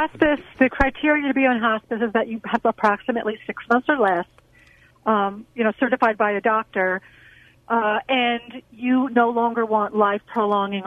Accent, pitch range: American, 185-225 Hz